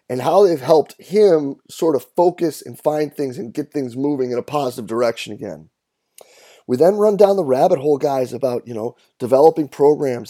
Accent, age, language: American, 30-49, English